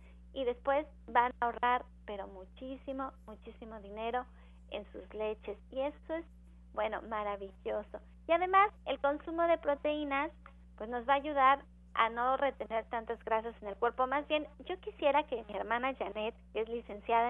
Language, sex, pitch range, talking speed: Spanish, female, 220-275 Hz, 165 wpm